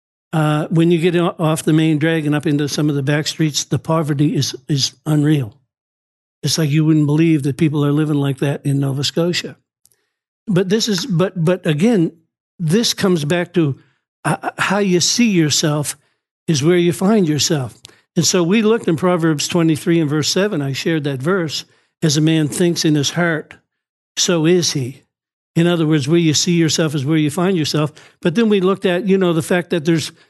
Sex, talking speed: male, 200 wpm